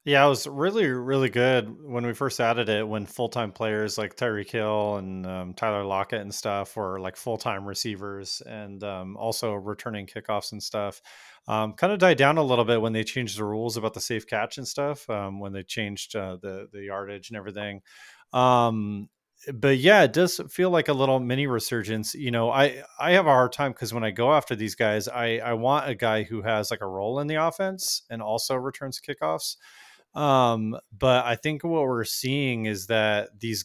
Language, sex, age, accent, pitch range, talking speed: English, male, 30-49, American, 105-130 Hz, 205 wpm